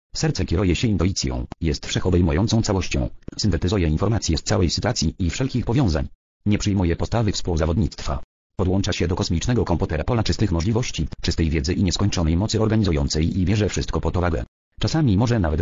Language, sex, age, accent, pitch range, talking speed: English, male, 40-59, Polish, 85-110 Hz, 160 wpm